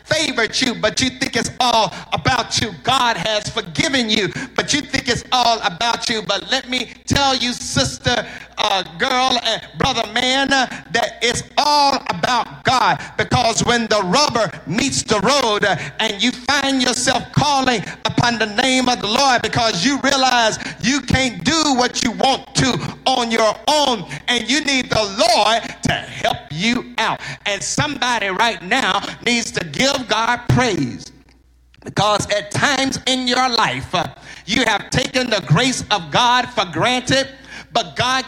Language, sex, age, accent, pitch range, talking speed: English, male, 50-69, American, 215-255 Hz, 165 wpm